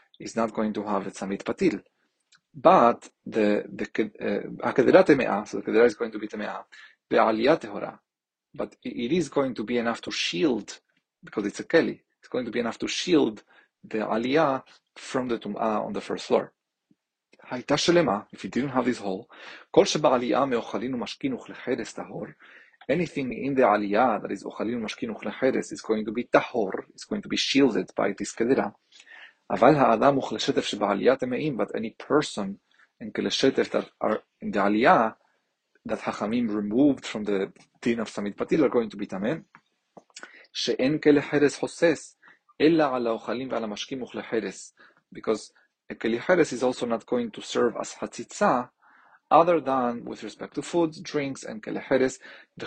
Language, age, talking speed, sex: English, 40-59, 135 wpm, male